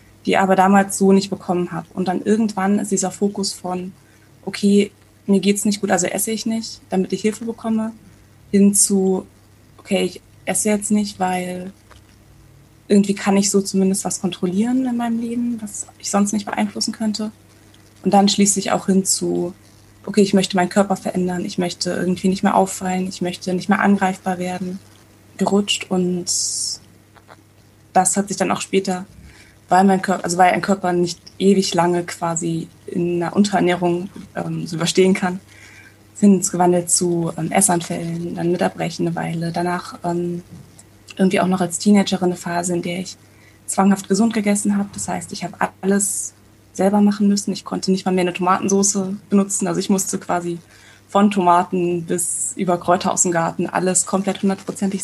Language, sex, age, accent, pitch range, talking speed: German, female, 20-39, German, 170-195 Hz, 170 wpm